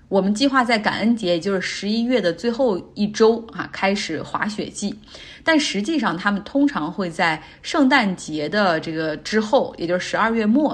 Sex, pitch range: female, 175-235 Hz